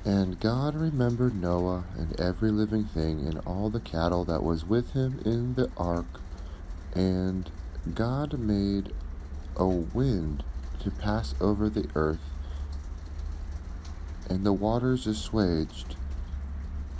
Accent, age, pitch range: American, 40-59, 75-100 Hz